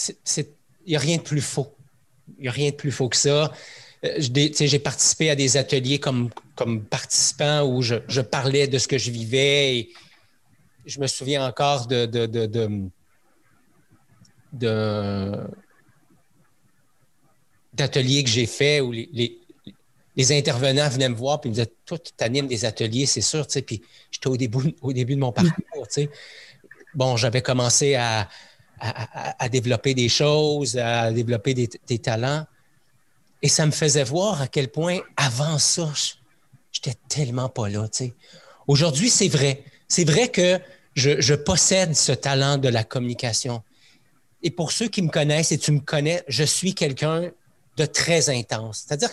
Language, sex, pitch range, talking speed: French, male, 125-150 Hz, 170 wpm